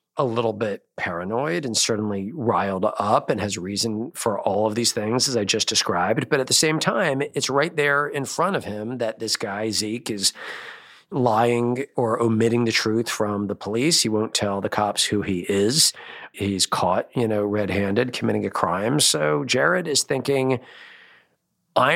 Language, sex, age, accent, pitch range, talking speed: English, male, 40-59, American, 105-125 Hz, 180 wpm